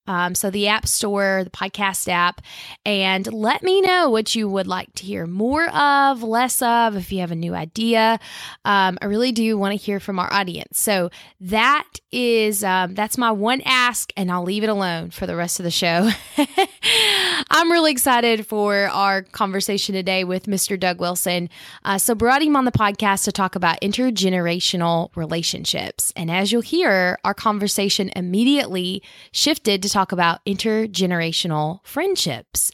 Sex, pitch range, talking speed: female, 185-230 Hz, 170 wpm